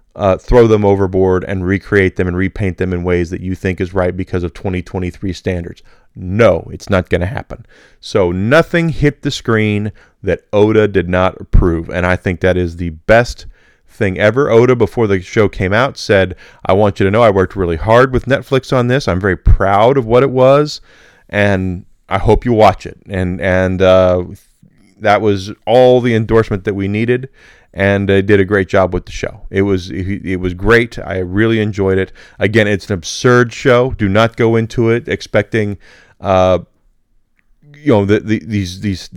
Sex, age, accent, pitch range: male, 30-49, American, 95-115 Hz